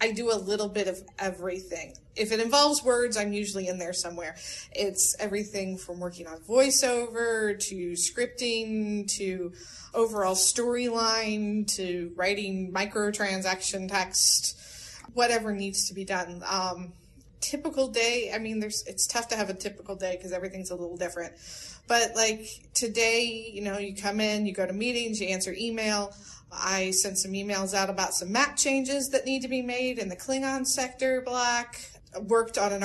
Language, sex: English, female